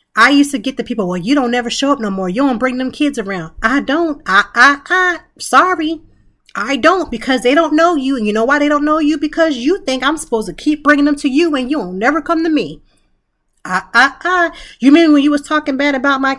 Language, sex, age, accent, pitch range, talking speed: English, female, 30-49, American, 200-295 Hz, 260 wpm